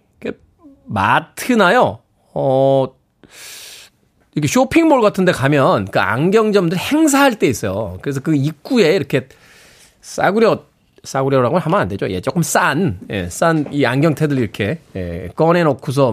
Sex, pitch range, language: male, 135-190 Hz, Korean